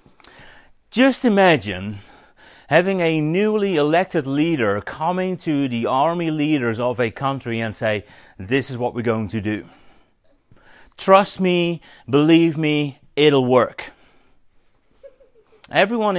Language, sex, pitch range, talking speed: English, male, 120-165 Hz, 115 wpm